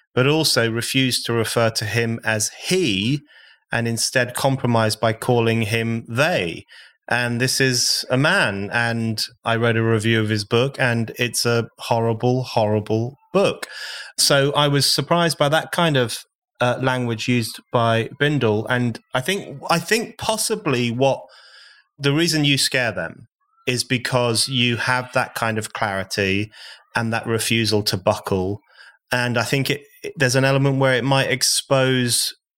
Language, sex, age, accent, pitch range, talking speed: English, male, 30-49, British, 115-140 Hz, 155 wpm